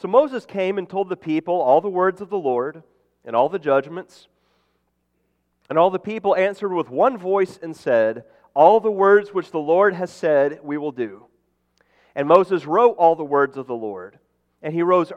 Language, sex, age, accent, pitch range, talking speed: English, male, 40-59, American, 150-195 Hz, 200 wpm